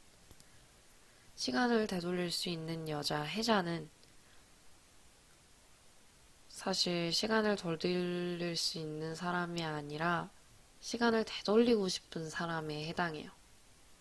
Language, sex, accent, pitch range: Korean, female, native, 155-185 Hz